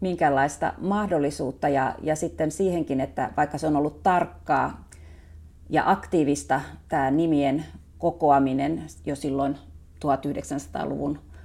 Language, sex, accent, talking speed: Finnish, female, native, 105 wpm